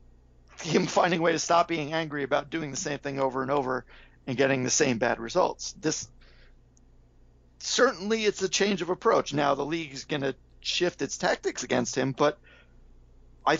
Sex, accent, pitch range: male, American, 125-175 Hz